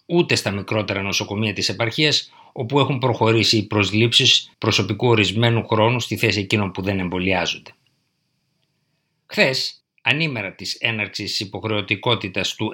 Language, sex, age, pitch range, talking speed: Greek, male, 50-69, 105-135 Hz, 120 wpm